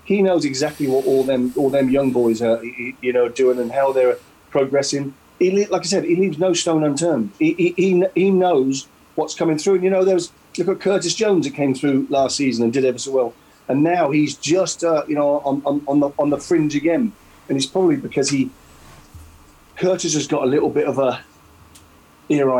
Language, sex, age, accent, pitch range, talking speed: English, male, 40-59, British, 130-170 Hz, 220 wpm